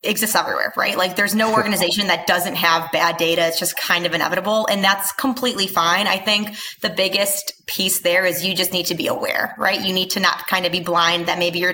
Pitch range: 175-195 Hz